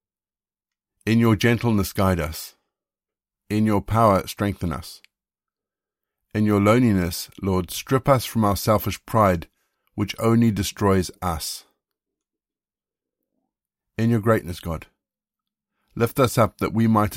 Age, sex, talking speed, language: 50-69, male, 120 wpm, English